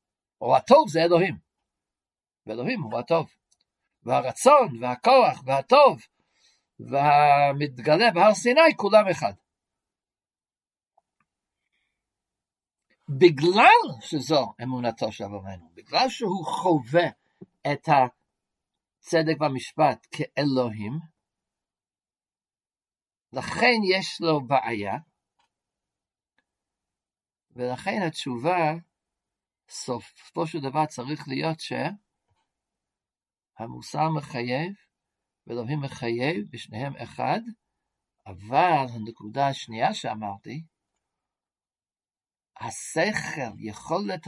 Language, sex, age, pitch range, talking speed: Hebrew, male, 60-79, 125-175 Hz, 65 wpm